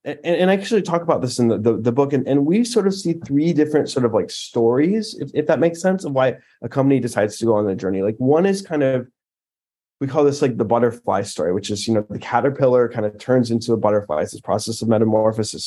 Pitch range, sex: 115-150 Hz, male